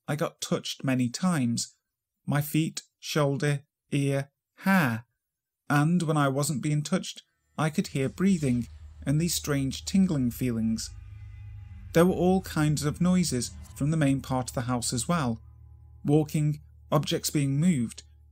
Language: English